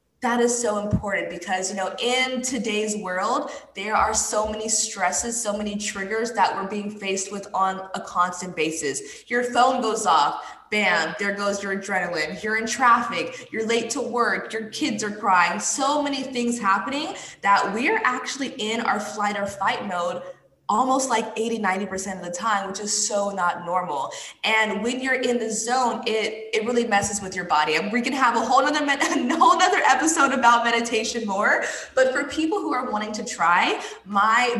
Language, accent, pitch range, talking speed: English, American, 200-250 Hz, 185 wpm